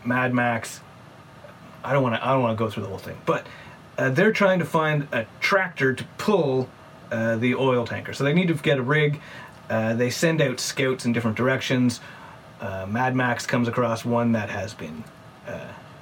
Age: 30-49